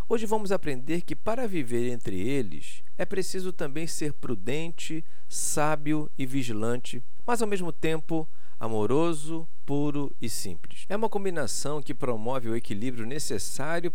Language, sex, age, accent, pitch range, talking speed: Portuguese, male, 50-69, Brazilian, 115-175 Hz, 140 wpm